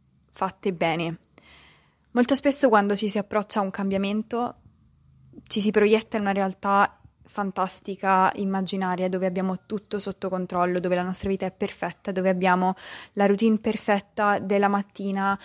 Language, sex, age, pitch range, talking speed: Italian, female, 20-39, 185-225 Hz, 145 wpm